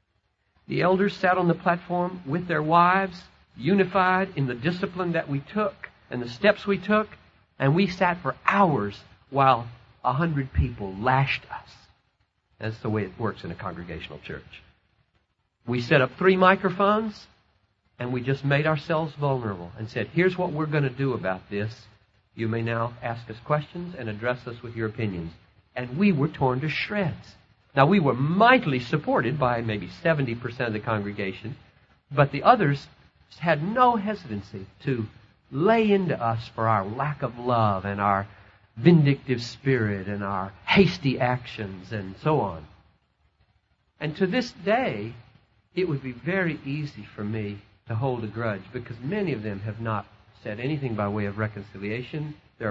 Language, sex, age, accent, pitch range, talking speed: English, male, 50-69, American, 105-155 Hz, 165 wpm